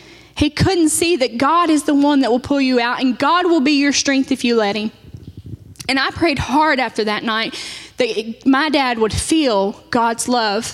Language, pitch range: English, 225-275 Hz